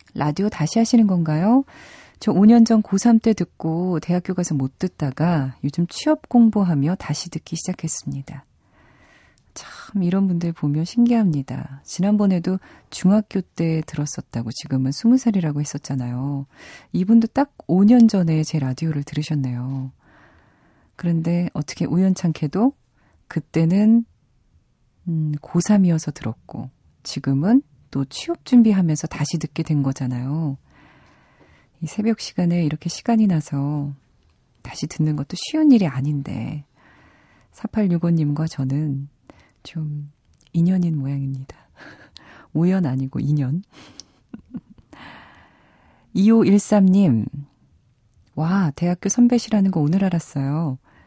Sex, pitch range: female, 140-195 Hz